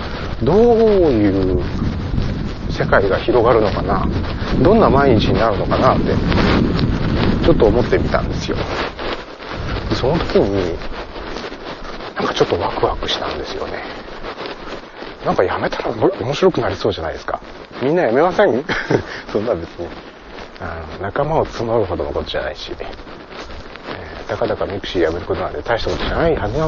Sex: male